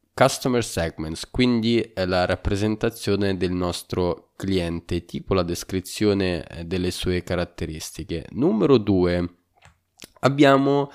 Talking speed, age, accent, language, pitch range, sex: 95 wpm, 20-39, native, Italian, 90-110 Hz, male